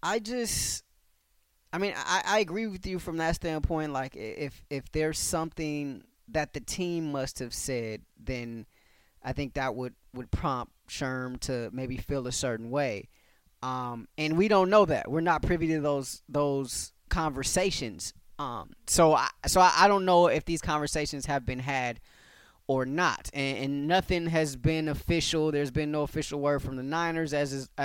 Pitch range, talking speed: 135-165 Hz, 175 wpm